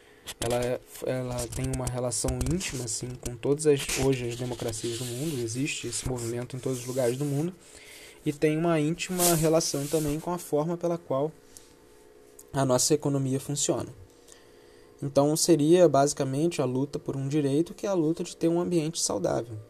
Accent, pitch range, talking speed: Brazilian, 120-150 Hz, 170 wpm